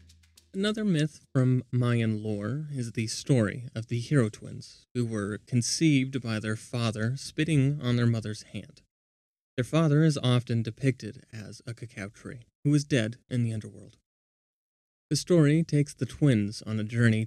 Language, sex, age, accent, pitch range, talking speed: English, male, 30-49, American, 110-135 Hz, 160 wpm